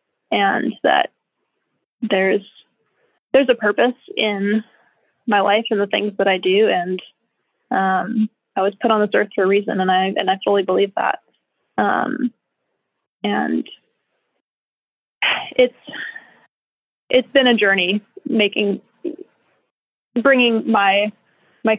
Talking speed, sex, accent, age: 120 wpm, female, American, 20-39